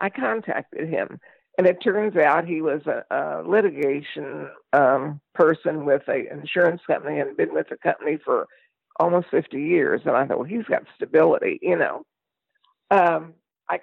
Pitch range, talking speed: 160-220 Hz, 165 wpm